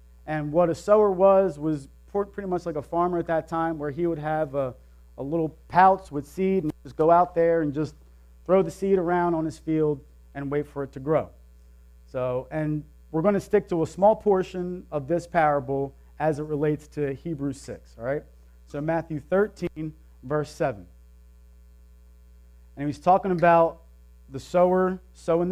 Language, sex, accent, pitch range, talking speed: English, male, American, 110-170 Hz, 180 wpm